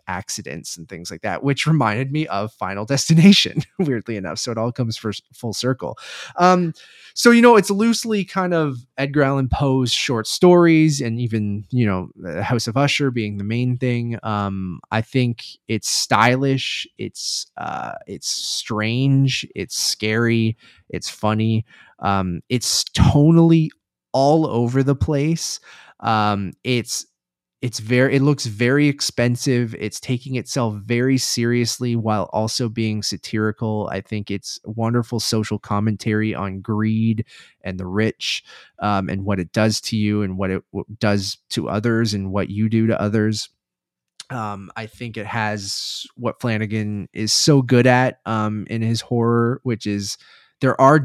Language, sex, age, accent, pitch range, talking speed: English, male, 20-39, American, 105-130 Hz, 155 wpm